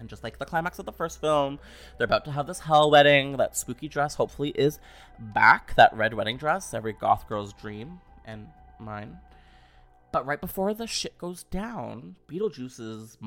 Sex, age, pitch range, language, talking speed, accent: male, 20-39, 105-155 Hz, English, 180 wpm, American